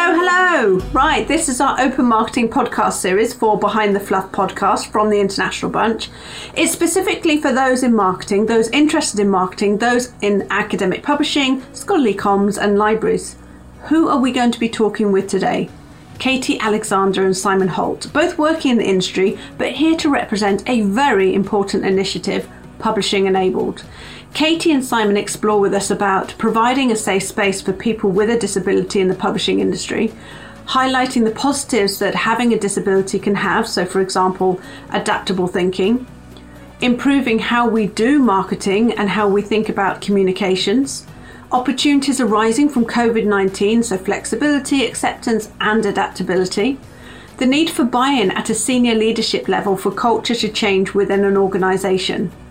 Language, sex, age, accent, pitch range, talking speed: English, female, 40-59, British, 195-255 Hz, 155 wpm